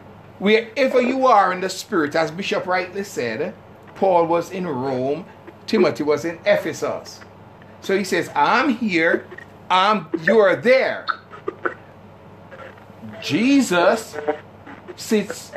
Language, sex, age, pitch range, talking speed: English, male, 60-79, 155-200 Hz, 110 wpm